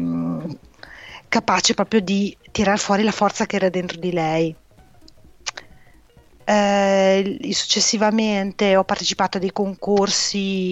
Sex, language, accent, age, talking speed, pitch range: female, Italian, native, 30-49, 105 wpm, 180-210 Hz